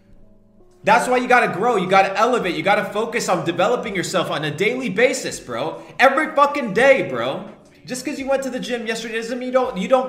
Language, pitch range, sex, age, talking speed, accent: English, 175-245 Hz, male, 30-49, 240 wpm, American